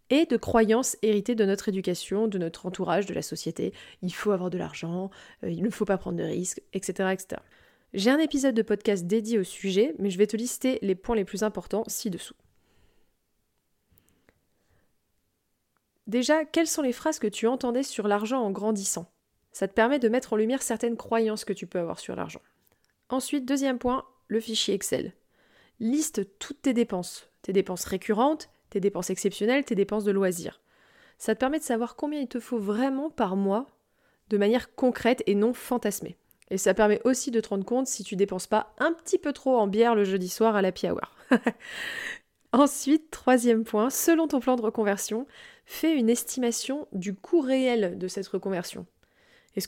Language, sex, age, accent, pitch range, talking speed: French, female, 20-39, French, 195-255 Hz, 185 wpm